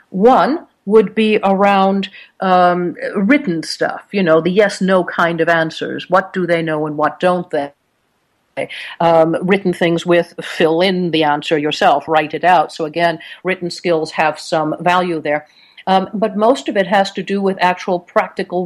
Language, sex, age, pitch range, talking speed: English, female, 50-69, 175-240 Hz, 175 wpm